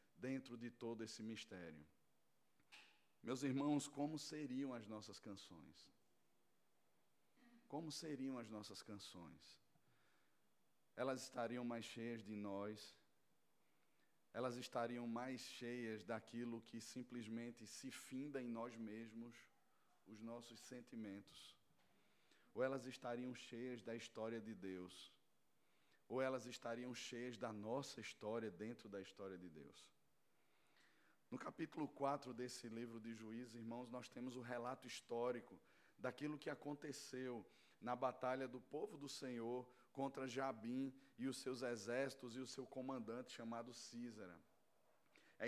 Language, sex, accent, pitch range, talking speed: Portuguese, male, Brazilian, 115-140 Hz, 125 wpm